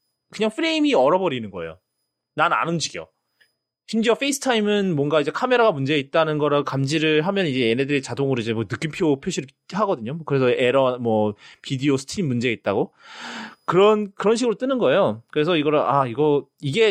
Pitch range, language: 135-205 Hz, English